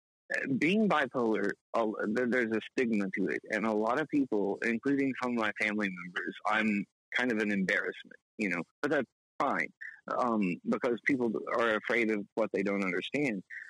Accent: American